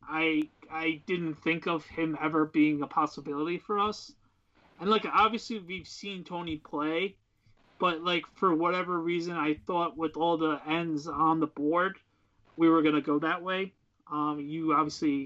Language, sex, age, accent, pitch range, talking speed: English, male, 30-49, American, 150-185 Hz, 170 wpm